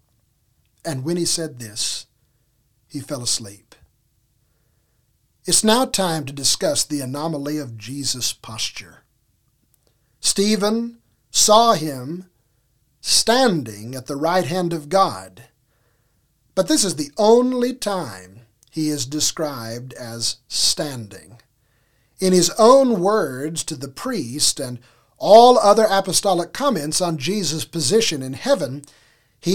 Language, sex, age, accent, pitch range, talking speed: English, male, 50-69, American, 125-195 Hz, 115 wpm